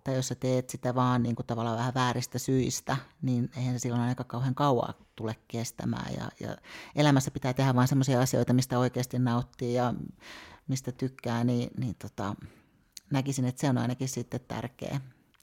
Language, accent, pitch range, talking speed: Finnish, native, 120-130 Hz, 165 wpm